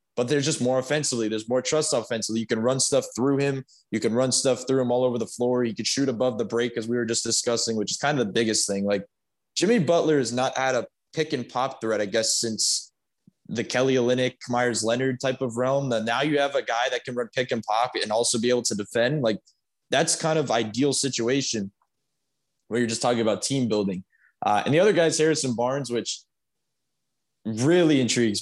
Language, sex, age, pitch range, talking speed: English, male, 20-39, 115-140 Hz, 220 wpm